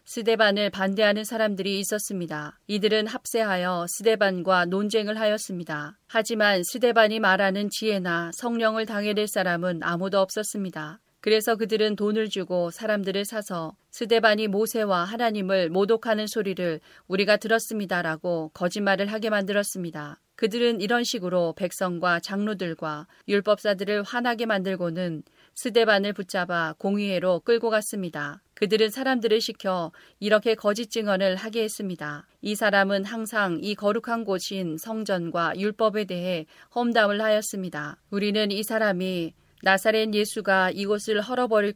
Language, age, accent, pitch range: Korean, 40-59, native, 180-220 Hz